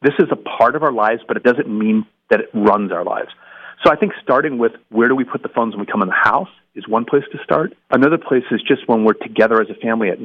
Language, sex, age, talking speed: English, male, 40-59, 285 wpm